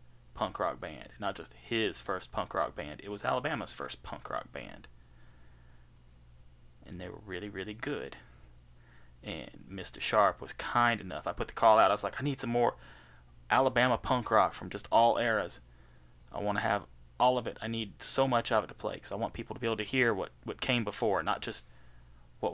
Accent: American